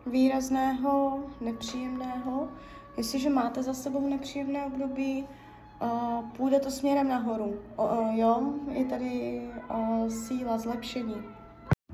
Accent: native